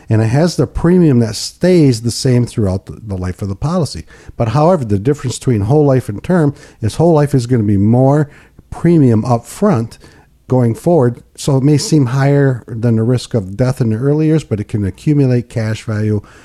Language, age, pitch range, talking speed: English, 50-69, 105-140 Hz, 210 wpm